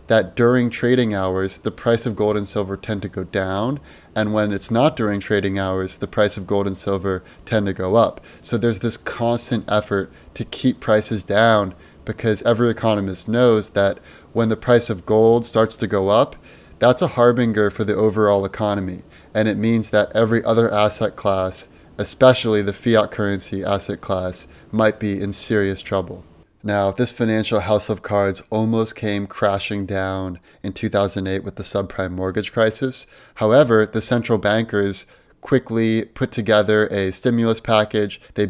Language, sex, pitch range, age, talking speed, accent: English, male, 100-115 Hz, 30-49, 170 wpm, American